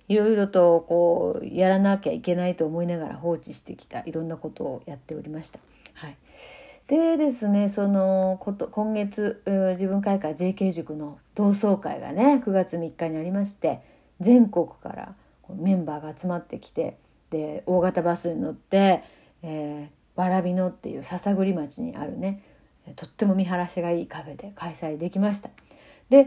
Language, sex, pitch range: Japanese, female, 170-220 Hz